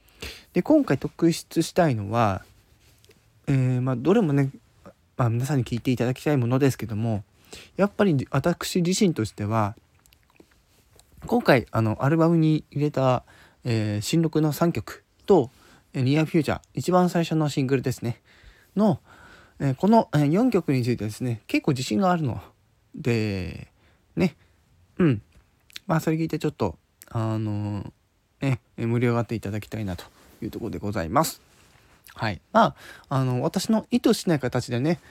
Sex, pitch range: male, 105-150 Hz